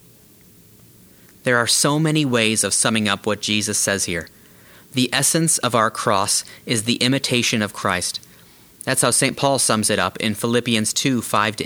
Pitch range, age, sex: 110-135 Hz, 30-49, male